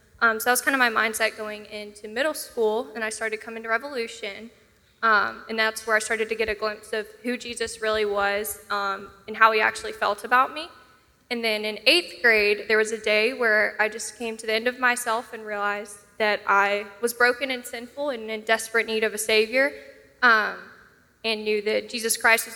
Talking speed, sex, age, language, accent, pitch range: 215 wpm, female, 10-29, English, American, 215-245 Hz